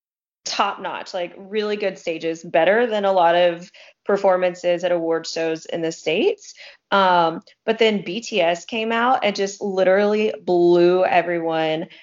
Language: English